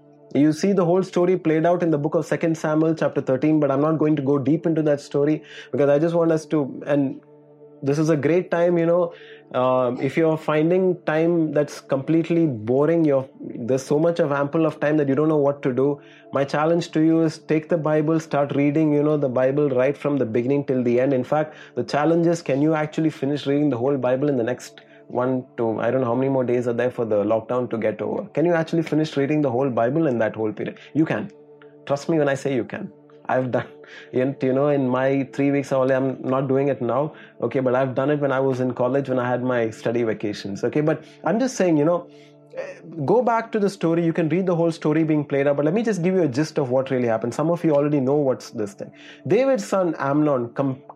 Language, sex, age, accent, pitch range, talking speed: English, male, 20-39, Indian, 130-160 Hz, 250 wpm